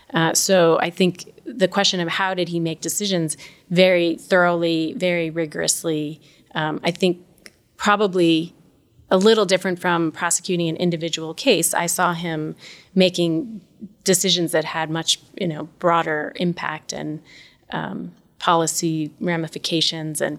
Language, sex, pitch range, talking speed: English, female, 160-185 Hz, 130 wpm